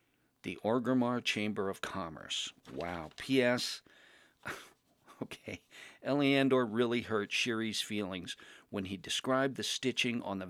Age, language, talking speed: 50-69, English, 115 wpm